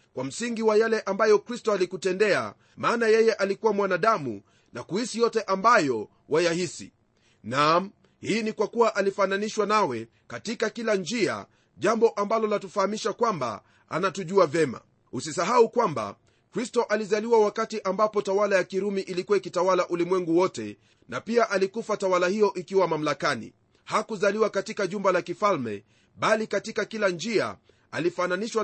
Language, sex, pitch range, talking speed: Swahili, male, 175-215 Hz, 130 wpm